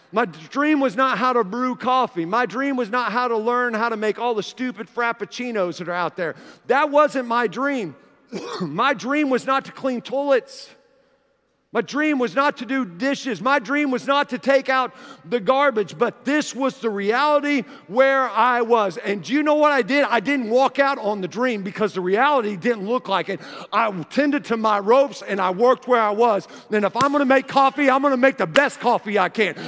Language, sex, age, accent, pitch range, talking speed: English, male, 50-69, American, 235-290 Hz, 220 wpm